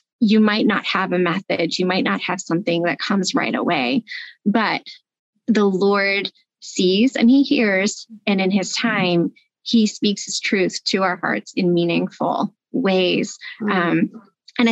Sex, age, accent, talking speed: female, 30-49, American, 155 wpm